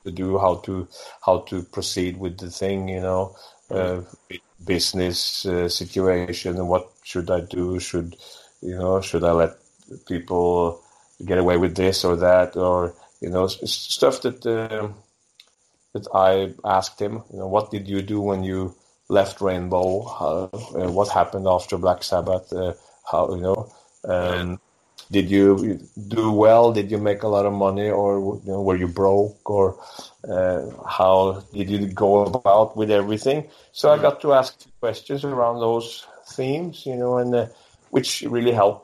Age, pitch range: 30-49, 90-105 Hz